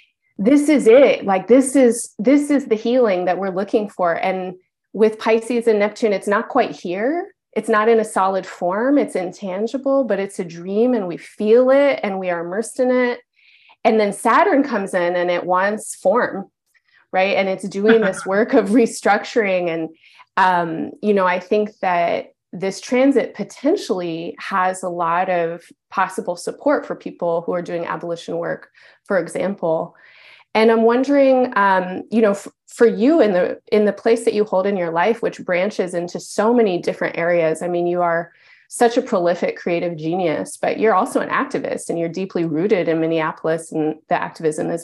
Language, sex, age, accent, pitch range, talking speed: English, female, 30-49, American, 180-230 Hz, 185 wpm